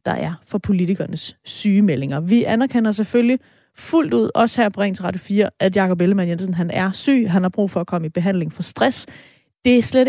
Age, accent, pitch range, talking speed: 30-49, native, 170-215 Hz, 210 wpm